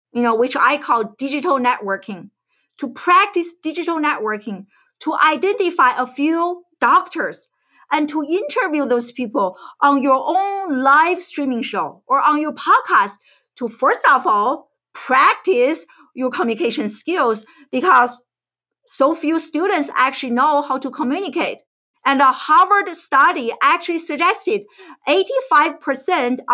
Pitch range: 250-355 Hz